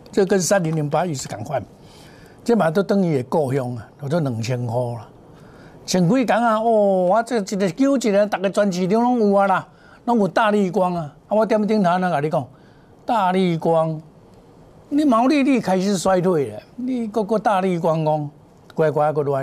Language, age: Chinese, 60-79